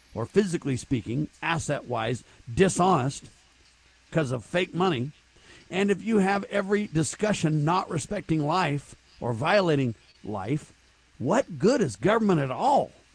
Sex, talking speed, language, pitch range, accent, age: male, 125 wpm, English, 140-190 Hz, American, 50-69